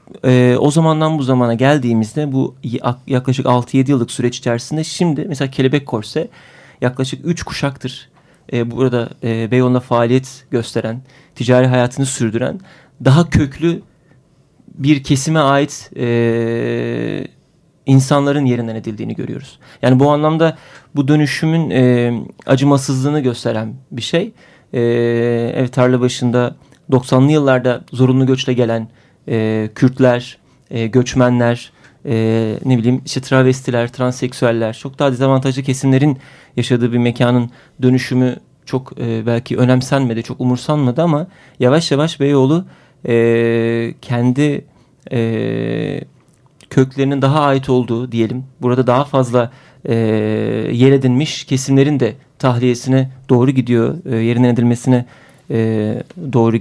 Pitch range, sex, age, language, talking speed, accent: 120-140 Hz, male, 40-59, Turkish, 105 wpm, native